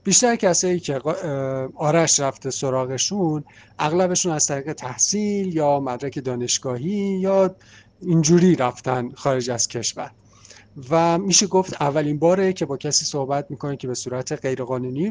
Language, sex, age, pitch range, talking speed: Arabic, male, 50-69, 130-170 Hz, 130 wpm